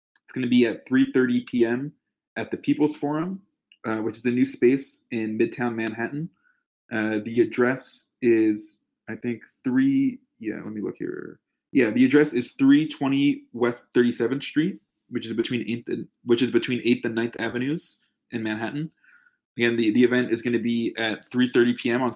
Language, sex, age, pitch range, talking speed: English, male, 20-39, 115-135 Hz, 180 wpm